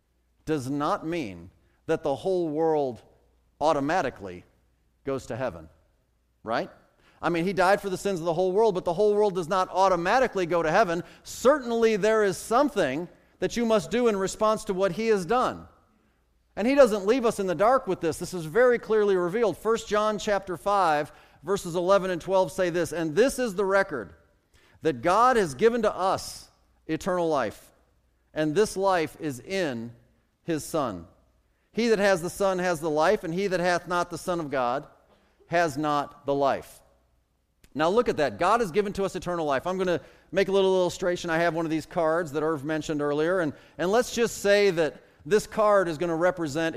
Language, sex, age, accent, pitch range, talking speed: English, male, 40-59, American, 150-195 Hz, 200 wpm